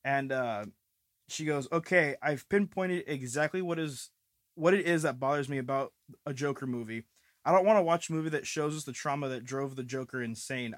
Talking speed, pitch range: 200 wpm, 125-150 Hz